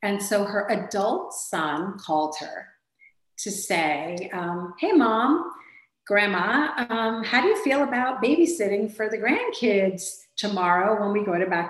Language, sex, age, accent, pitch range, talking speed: English, female, 40-59, American, 190-240 Hz, 150 wpm